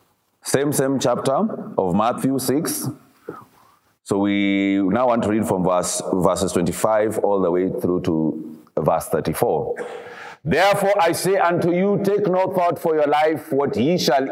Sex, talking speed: male, 155 wpm